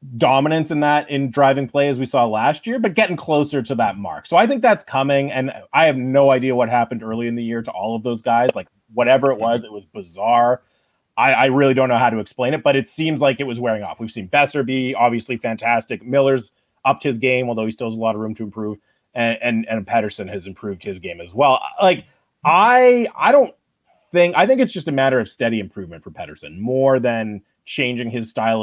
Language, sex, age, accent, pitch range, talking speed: English, male, 30-49, American, 115-145 Hz, 235 wpm